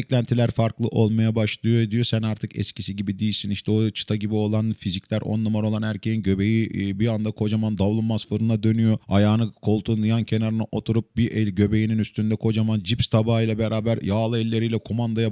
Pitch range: 95-115 Hz